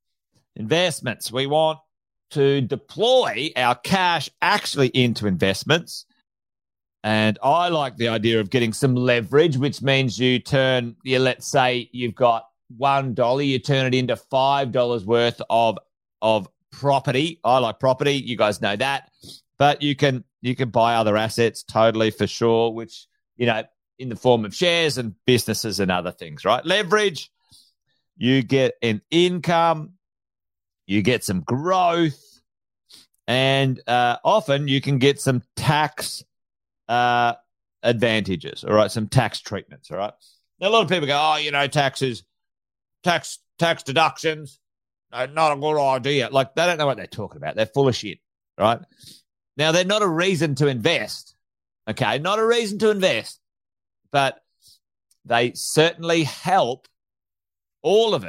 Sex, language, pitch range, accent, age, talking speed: male, English, 110-150 Hz, Australian, 40-59, 150 wpm